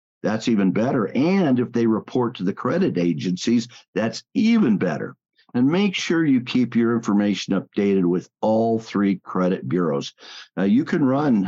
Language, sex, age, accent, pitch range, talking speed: English, male, 50-69, American, 100-135 Hz, 160 wpm